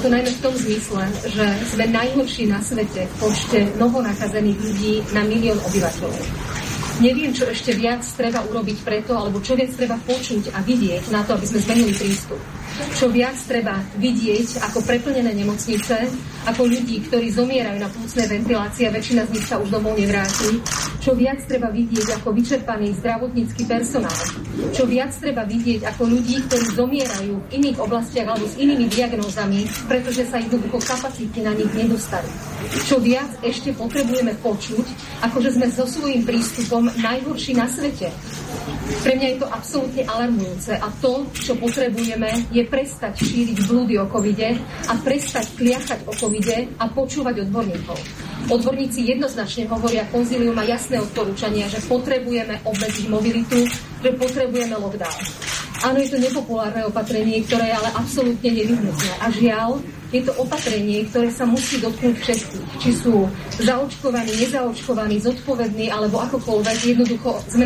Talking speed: 150 wpm